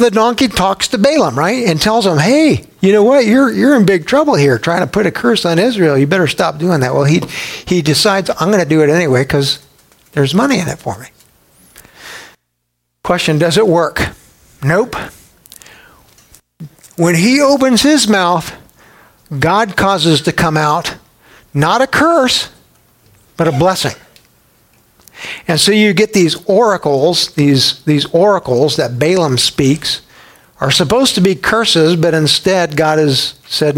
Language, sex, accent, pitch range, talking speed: English, male, American, 140-190 Hz, 160 wpm